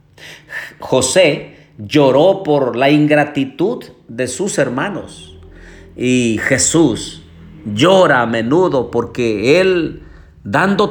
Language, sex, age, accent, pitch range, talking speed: Spanish, male, 50-69, Mexican, 120-170 Hz, 90 wpm